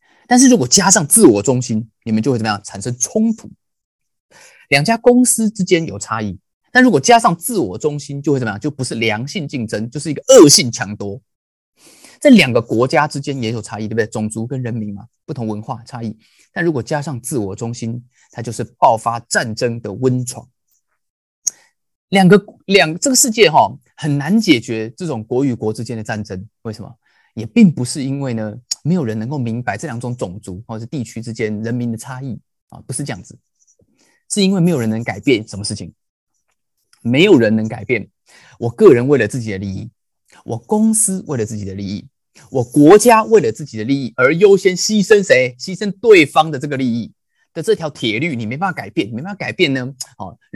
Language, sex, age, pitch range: Chinese, male, 20-39, 110-170 Hz